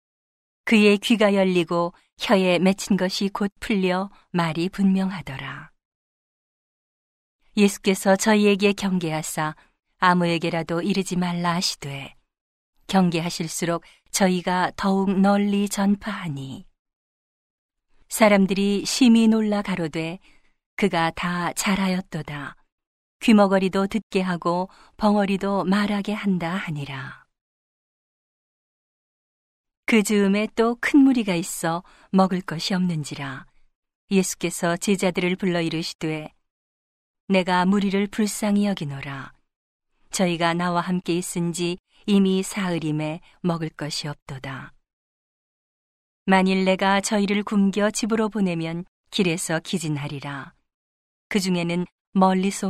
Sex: female